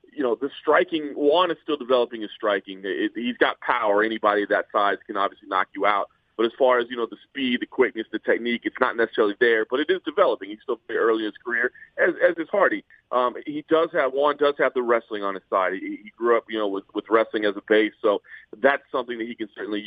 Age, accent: 30-49, American